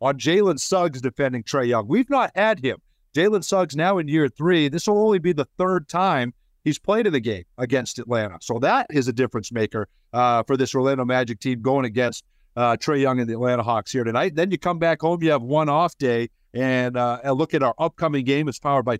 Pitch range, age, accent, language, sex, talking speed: 120-160 Hz, 50-69, American, English, male, 235 wpm